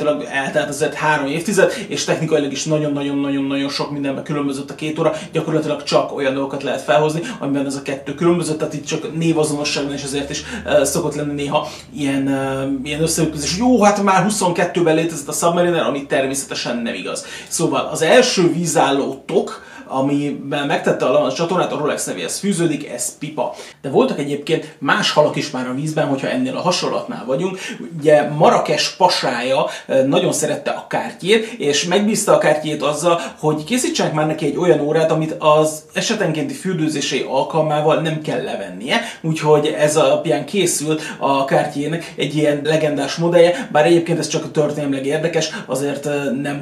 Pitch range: 145-165 Hz